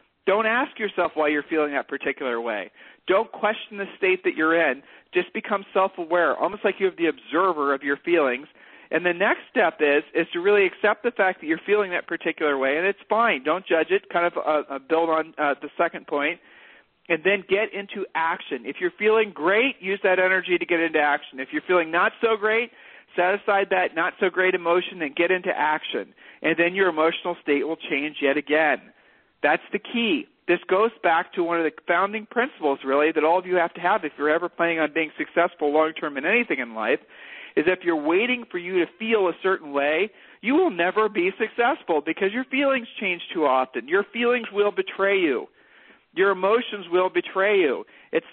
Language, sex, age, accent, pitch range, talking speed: English, male, 40-59, American, 160-215 Hz, 205 wpm